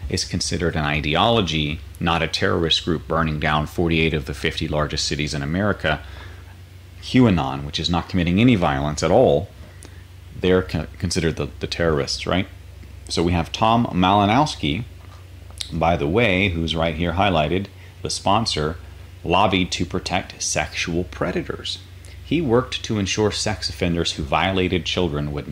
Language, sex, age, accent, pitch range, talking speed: English, male, 30-49, American, 80-95 Hz, 145 wpm